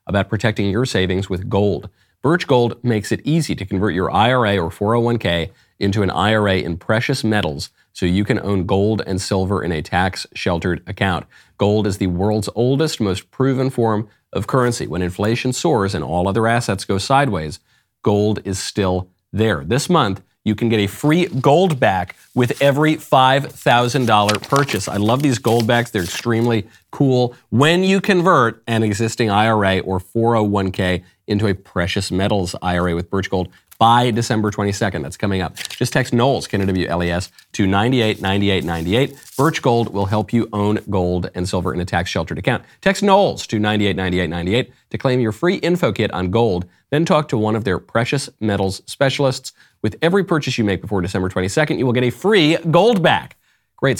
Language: English